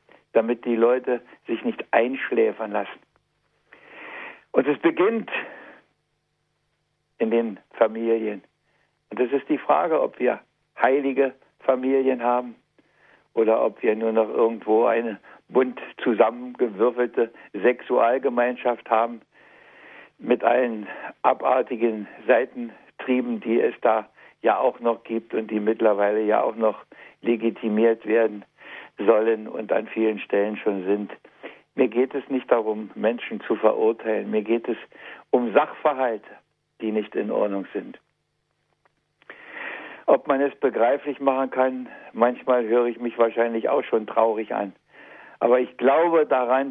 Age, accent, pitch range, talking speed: 60-79, German, 110-135 Hz, 125 wpm